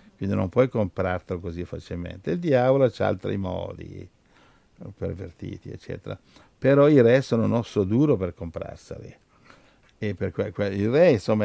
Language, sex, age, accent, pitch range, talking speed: Italian, male, 50-69, native, 95-115 Hz, 150 wpm